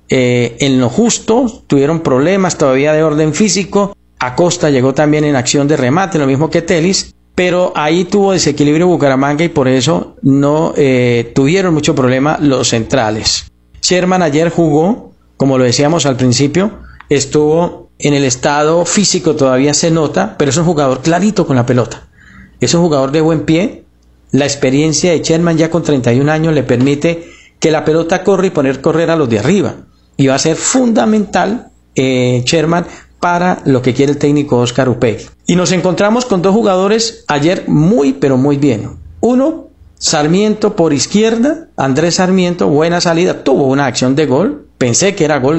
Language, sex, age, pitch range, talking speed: Spanish, male, 50-69, 135-175 Hz, 170 wpm